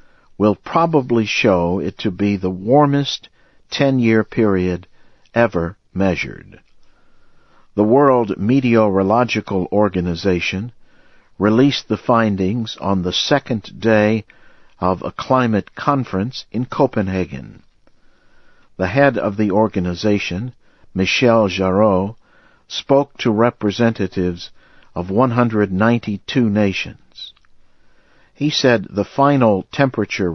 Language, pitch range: English, 95-120 Hz